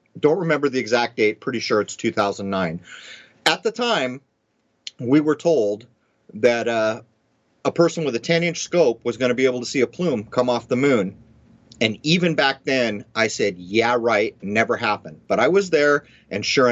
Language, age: English, 40-59